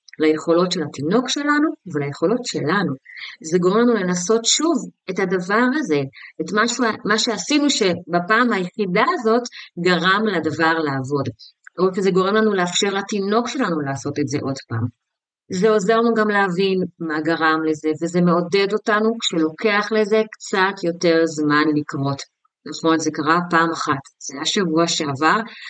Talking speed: 145 wpm